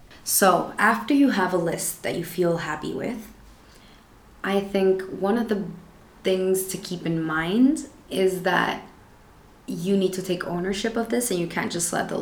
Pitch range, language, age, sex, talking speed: 175-205 Hz, English, 20-39, female, 175 wpm